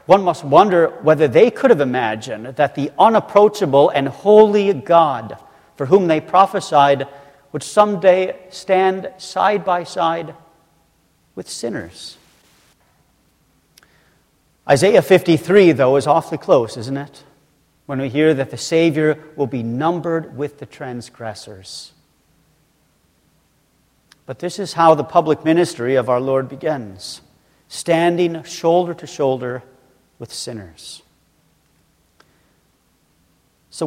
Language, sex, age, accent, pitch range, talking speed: English, male, 40-59, American, 140-180 Hz, 115 wpm